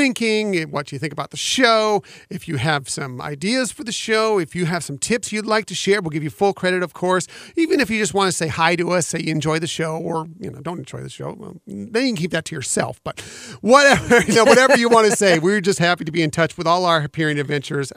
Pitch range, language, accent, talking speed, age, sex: 165-215 Hz, English, American, 275 wpm, 40-59, male